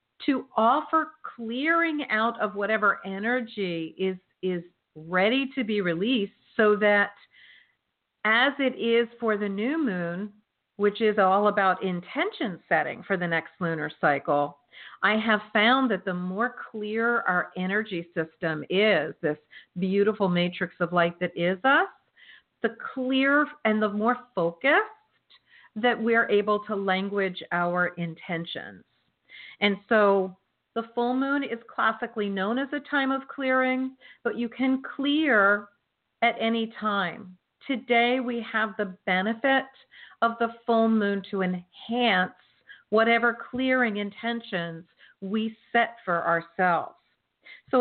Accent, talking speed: American, 130 wpm